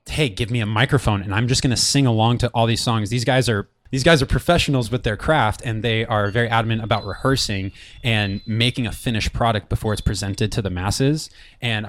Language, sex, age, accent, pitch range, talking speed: English, male, 20-39, American, 105-125 Hz, 225 wpm